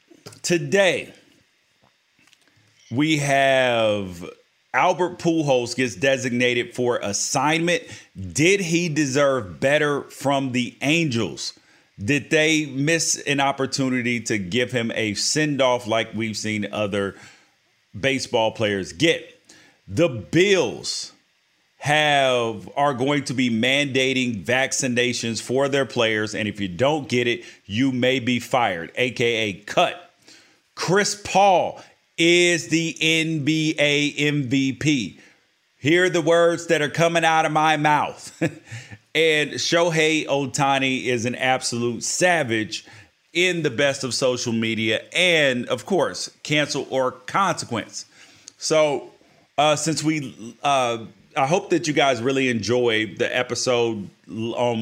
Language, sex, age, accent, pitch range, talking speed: English, male, 30-49, American, 120-155 Hz, 115 wpm